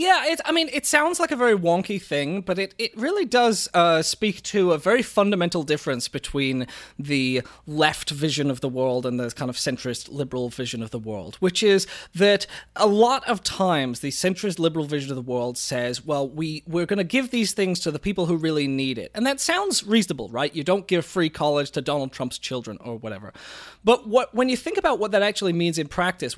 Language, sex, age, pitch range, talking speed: English, male, 20-39, 145-205 Hz, 225 wpm